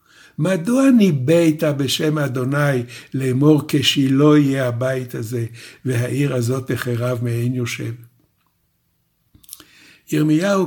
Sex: male